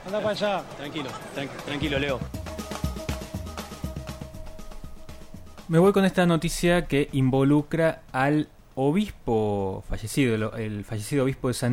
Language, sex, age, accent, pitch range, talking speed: Spanish, male, 20-39, Argentinian, 120-155 Hz, 105 wpm